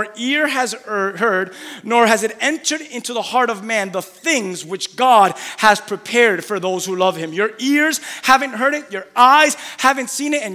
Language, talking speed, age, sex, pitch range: English, 195 wpm, 30-49, male, 195-265 Hz